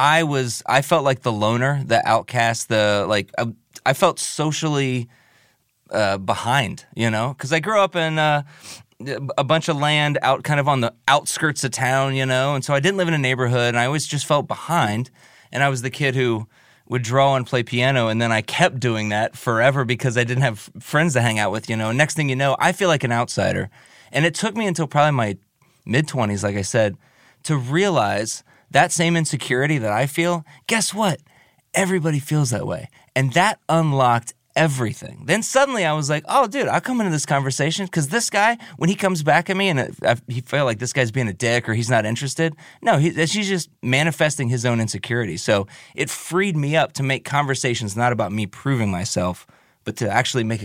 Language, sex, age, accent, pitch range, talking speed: English, male, 20-39, American, 120-155 Hz, 210 wpm